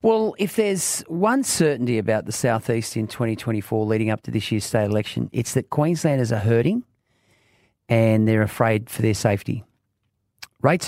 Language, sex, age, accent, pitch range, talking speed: English, male, 40-59, Australian, 105-130 Hz, 165 wpm